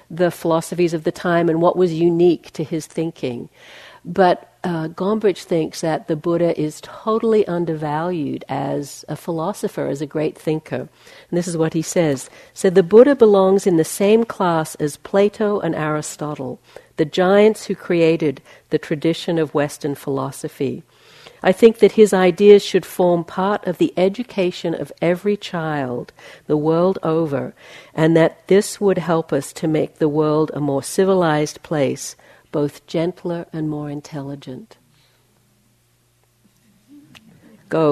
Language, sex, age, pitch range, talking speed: English, female, 60-79, 155-195 Hz, 145 wpm